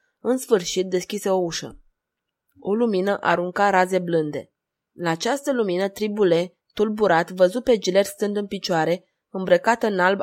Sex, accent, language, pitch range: female, native, Romanian, 180-220 Hz